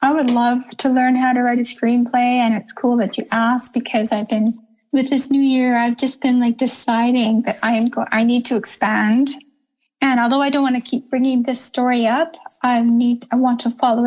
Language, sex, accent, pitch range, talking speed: English, female, American, 235-265 Hz, 225 wpm